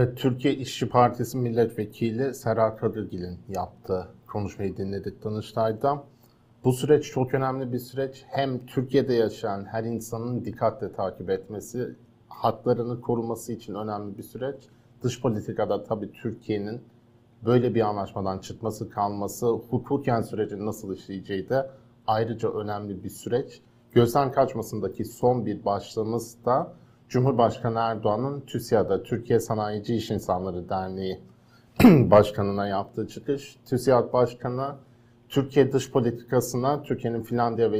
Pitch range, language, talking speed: 105-125 Hz, Turkish, 115 wpm